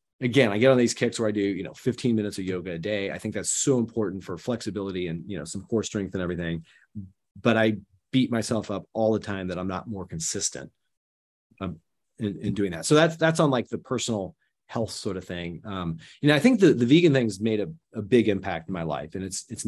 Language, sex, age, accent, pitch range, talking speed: English, male, 30-49, American, 95-120 Hz, 245 wpm